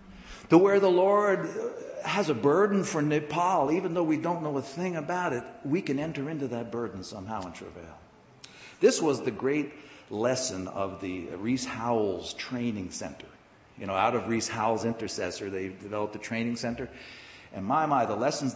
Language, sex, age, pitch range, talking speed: English, male, 60-79, 115-185 Hz, 180 wpm